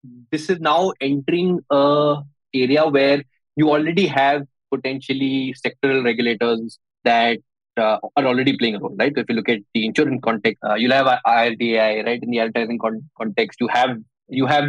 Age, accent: 20-39, Indian